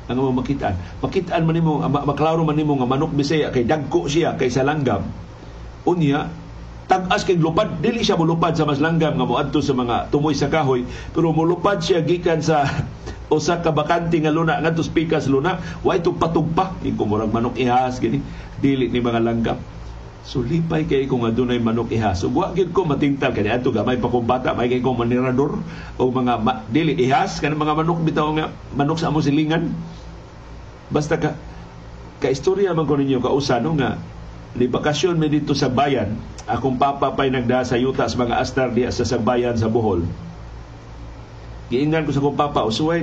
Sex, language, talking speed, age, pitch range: male, Filipino, 175 wpm, 50-69, 125-160 Hz